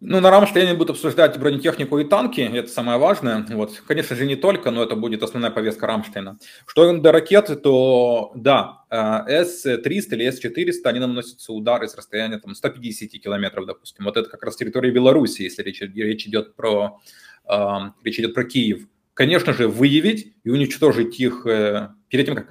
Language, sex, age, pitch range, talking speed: Ukrainian, male, 20-39, 110-145 Hz, 175 wpm